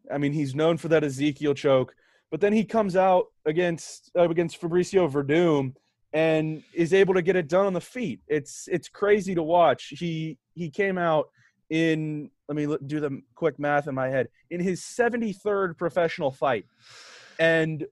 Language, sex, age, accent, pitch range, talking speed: English, male, 20-39, American, 140-180 Hz, 180 wpm